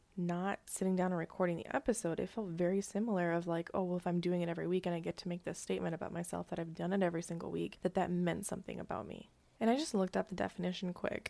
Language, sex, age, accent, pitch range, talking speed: English, female, 20-39, American, 180-210 Hz, 270 wpm